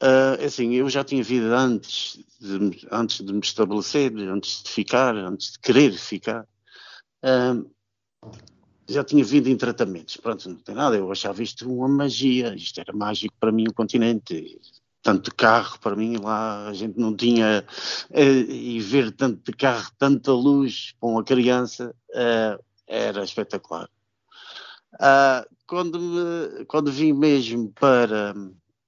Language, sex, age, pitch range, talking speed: Portuguese, male, 50-69, 105-130 Hz, 150 wpm